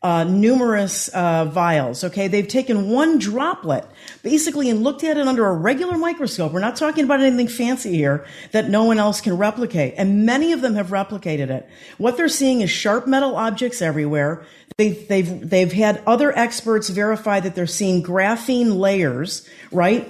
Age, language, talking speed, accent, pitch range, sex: 50-69, English, 175 wpm, American, 180-240 Hz, female